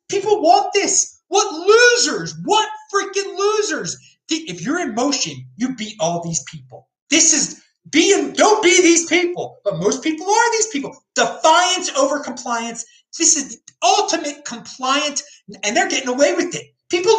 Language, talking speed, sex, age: English, 155 wpm, male, 30-49